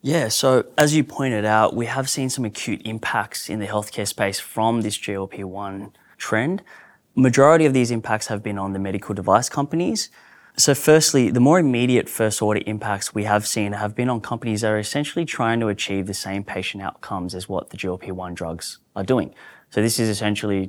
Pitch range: 100-115 Hz